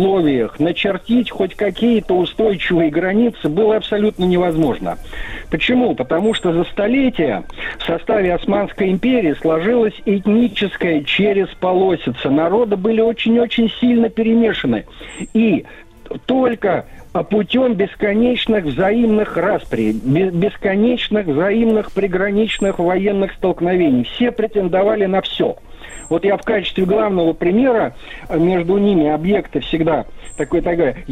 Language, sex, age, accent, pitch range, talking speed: Russian, male, 50-69, native, 175-225 Hz, 100 wpm